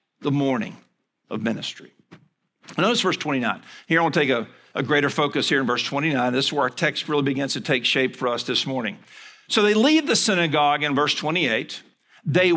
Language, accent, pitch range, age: English, American, 145-195 Hz, 50-69